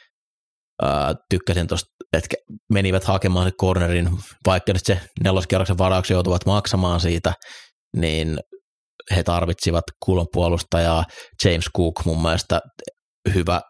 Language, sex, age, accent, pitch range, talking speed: Finnish, male, 30-49, native, 85-100 Hz, 105 wpm